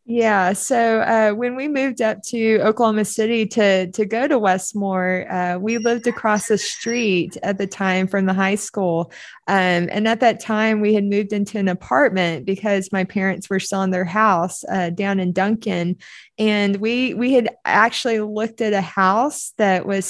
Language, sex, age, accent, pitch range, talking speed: English, female, 20-39, American, 190-220 Hz, 185 wpm